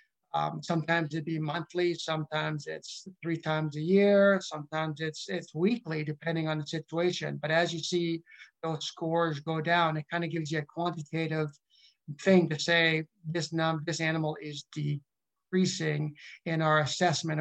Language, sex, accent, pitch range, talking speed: English, male, American, 150-170 Hz, 160 wpm